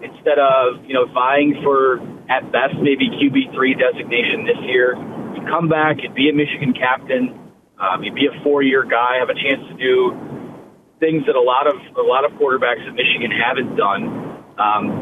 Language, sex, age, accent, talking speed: English, male, 30-49, American, 185 wpm